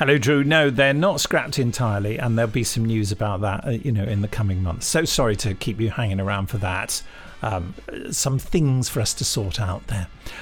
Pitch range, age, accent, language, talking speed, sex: 115-150 Hz, 50-69, British, English, 220 wpm, male